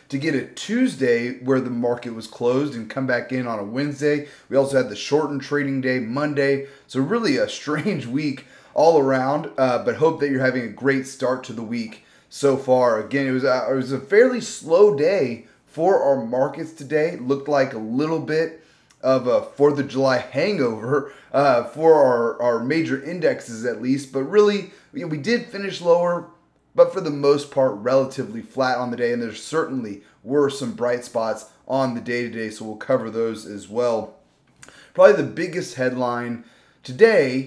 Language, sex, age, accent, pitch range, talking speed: English, male, 30-49, American, 120-150 Hz, 190 wpm